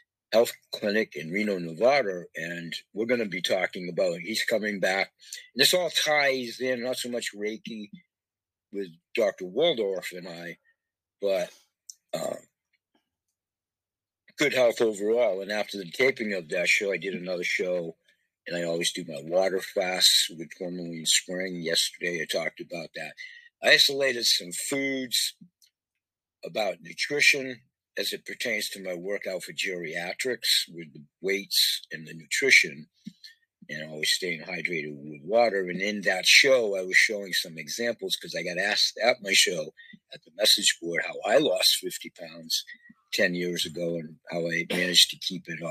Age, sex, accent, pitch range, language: 60-79, male, American, 85-130 Hz, Chinese